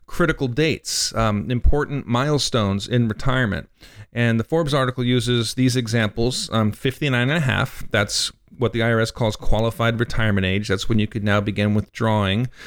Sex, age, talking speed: male, 40-59, 160 wpm